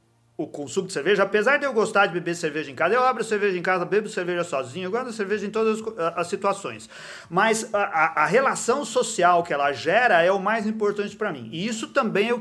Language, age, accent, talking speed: Portuguese, 40-59, Brazilian, 225 wpm